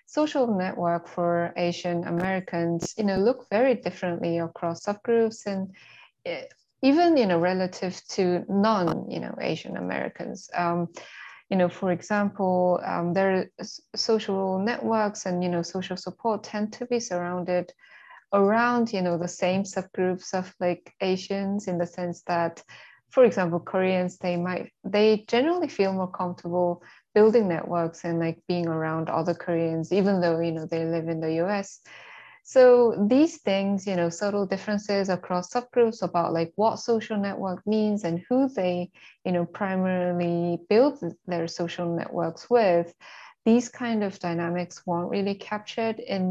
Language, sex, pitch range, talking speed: English, female, 175-210 Hz, 150 wpm